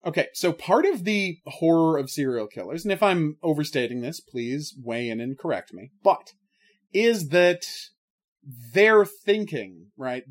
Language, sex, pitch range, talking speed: English, male, 135-190 Hz, 150 wpm